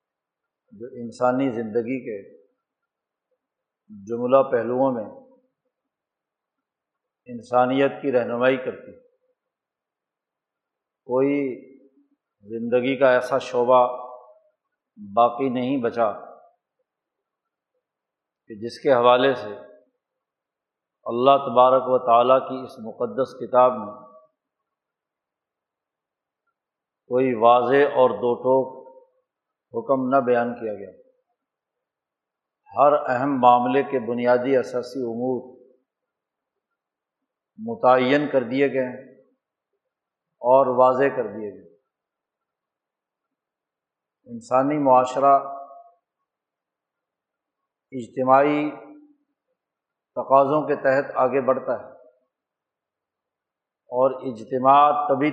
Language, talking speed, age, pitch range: Urdu, 75 wpm, 50-69, 125-150 Hz